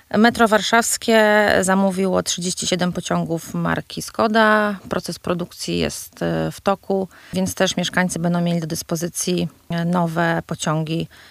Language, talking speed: Polish, 110 wpm